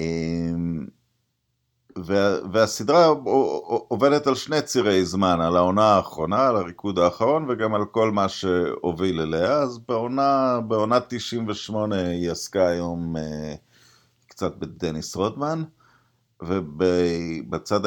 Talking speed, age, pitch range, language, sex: 95 wpm, 50-69, 90-125 Hz, Hebrew, male